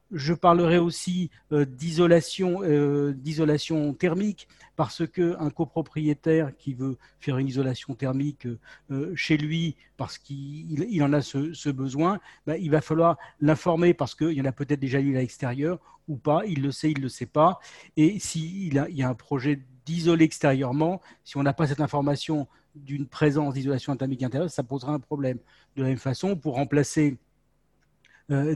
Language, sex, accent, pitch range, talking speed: French, male, French, 135-160 Hz, 175 wpm